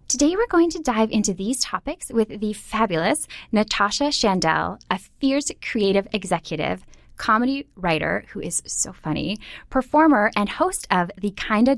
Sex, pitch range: female, 180-260 Hz